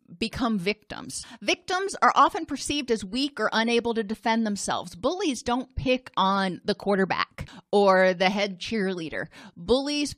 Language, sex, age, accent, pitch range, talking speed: English, female, 30-49, American, 195-245 Hz, 140 wpm